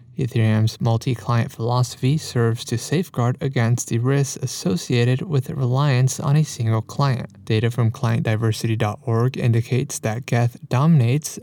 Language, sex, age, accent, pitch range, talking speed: English, male, 20-39, American, 120-145 Hz, 120 wpm